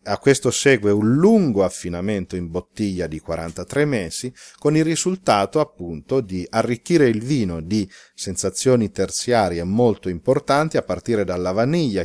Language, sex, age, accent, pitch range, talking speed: Italian, male, 40-59, native, 95-125 Hz, 140 wpm